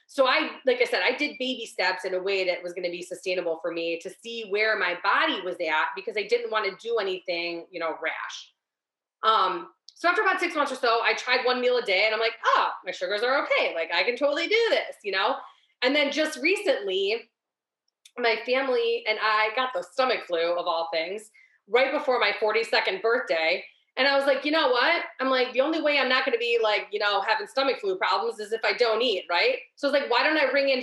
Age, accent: 20-39, American